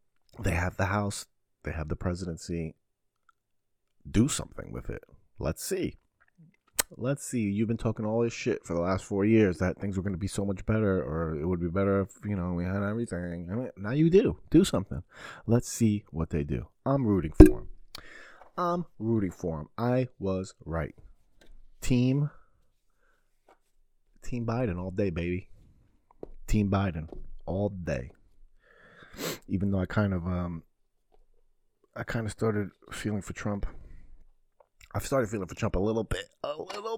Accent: American